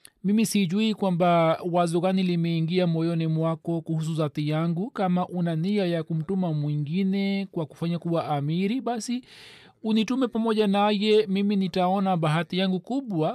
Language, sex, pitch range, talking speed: Swahili, male, 160-195 Hz, 135 wpm